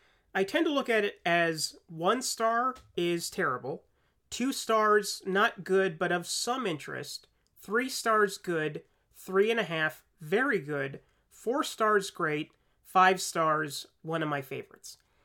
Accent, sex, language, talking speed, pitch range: American, male, English, 145 wpm, 165-215 Hz